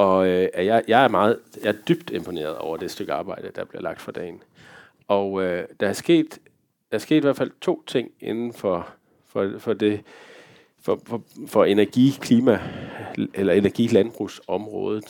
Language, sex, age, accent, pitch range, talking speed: Danish, male, 40-59, native, 95-120 Hz, 125 wpm